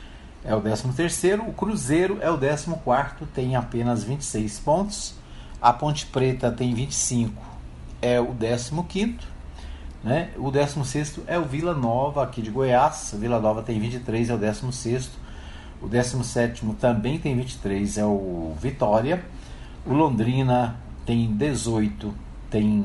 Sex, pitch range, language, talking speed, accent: male, 105-145 Hz, Portuguese, 135 wpm, Brazilian